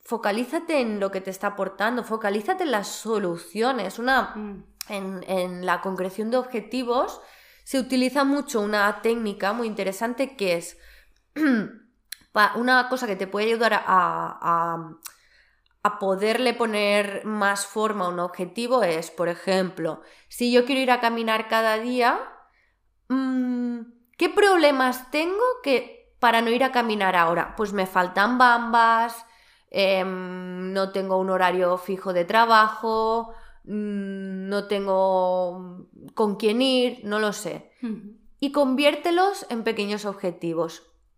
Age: 20-39